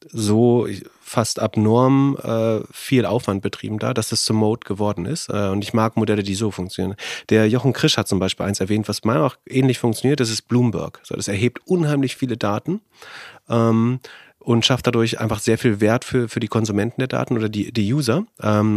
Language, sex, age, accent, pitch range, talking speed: German, male, 30-49, German, 105-120 Hz, 200 wpm